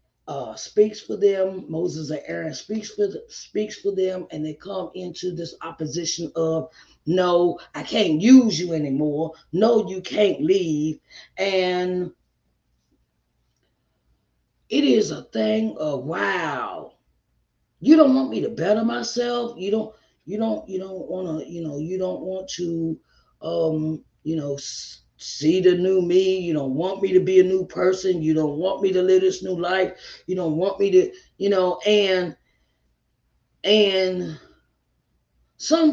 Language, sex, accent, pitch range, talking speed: English, female, American, 150-195 Hz, 155 wpm